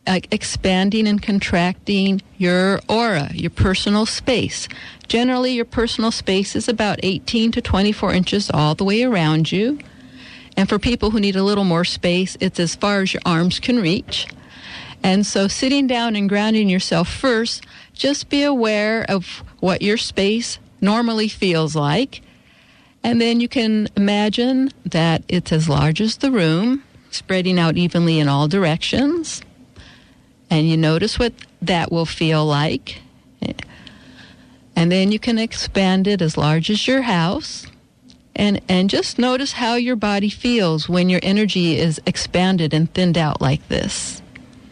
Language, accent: English, American